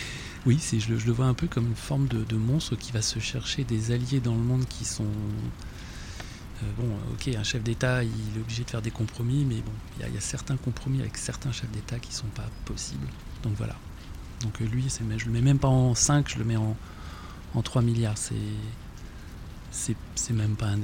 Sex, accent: male, French